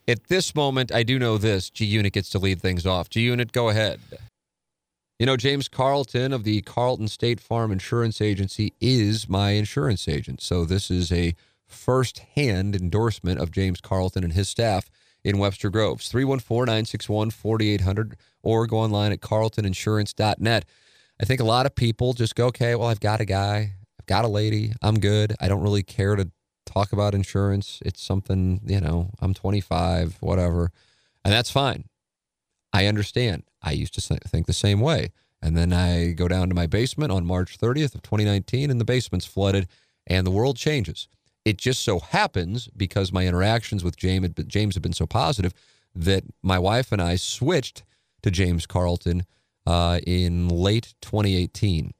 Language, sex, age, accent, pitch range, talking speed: English, male, 30-49, American, 95-115 Hz, 170 wpm